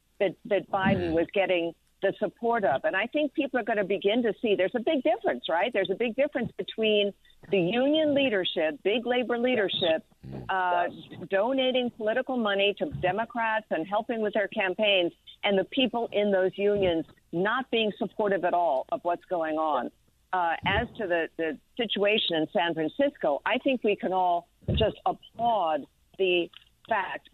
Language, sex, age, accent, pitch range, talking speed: English, female, 50-69, American, 180-230 Hz, 170 wpm